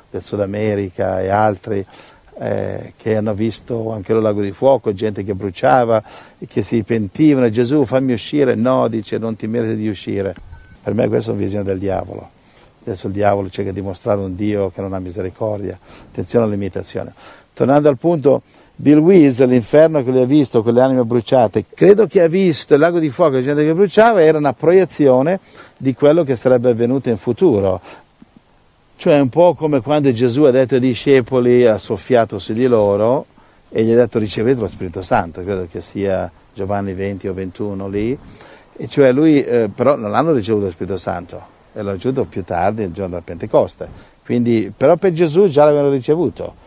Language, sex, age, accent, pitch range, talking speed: Italian, male, 50-69, native, 100-140 Hz, 190 wpm